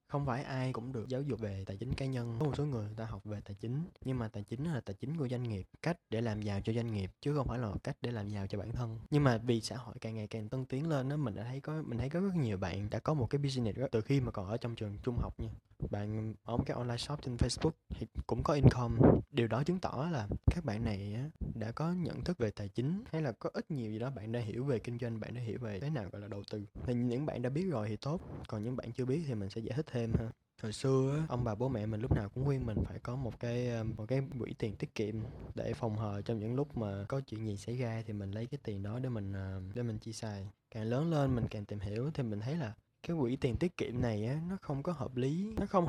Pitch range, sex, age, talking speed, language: 110-140 Hz, male, 20-39, 295 wpm, Vietnamese